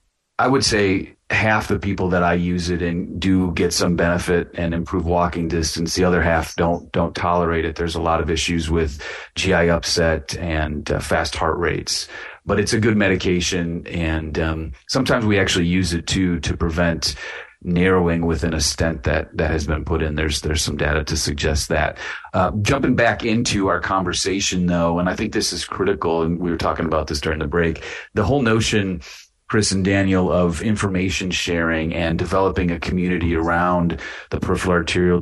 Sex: male